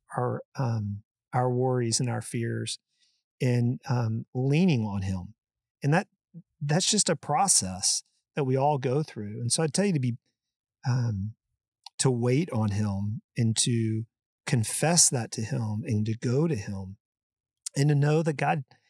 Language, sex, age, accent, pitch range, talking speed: English, male, 40-59, American, 115-160 Hz, 160 wpm